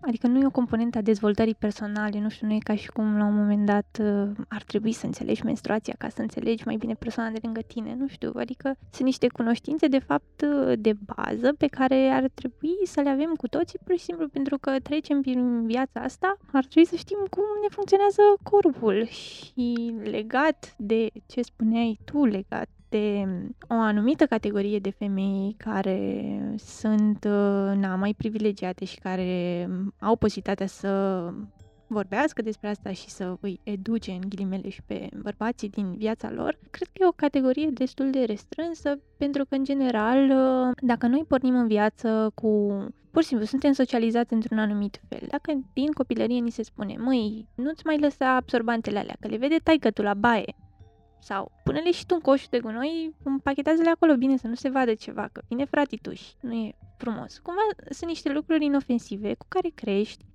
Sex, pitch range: female, 210-280 Hz